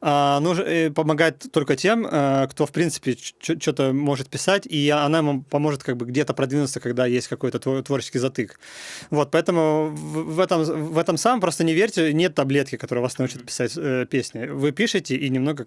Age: 30-49